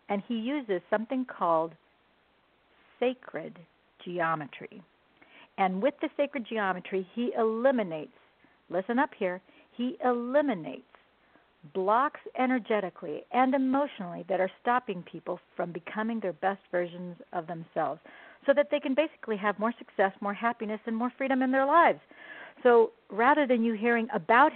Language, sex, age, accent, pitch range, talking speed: English, female, 50-69, American, 190-255 Hz, 135 wpm